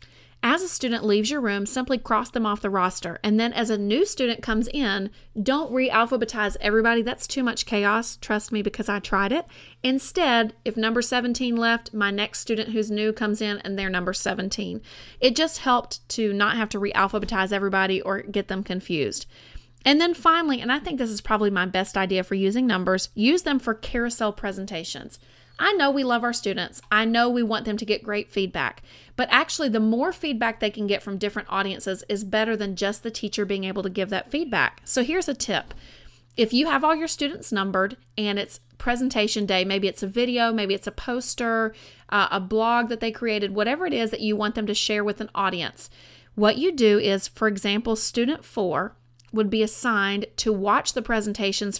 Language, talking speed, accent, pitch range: English, 200 wpm, American, 200-240 Hz